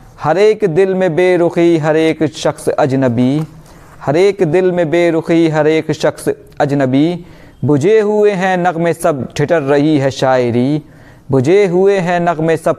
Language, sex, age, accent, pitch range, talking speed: Hindi, male, 40-59, native, 145-180 Hz, 145 wpm